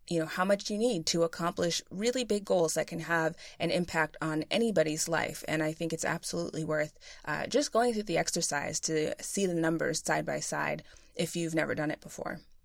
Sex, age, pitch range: female, 20-39, 165-200 Hz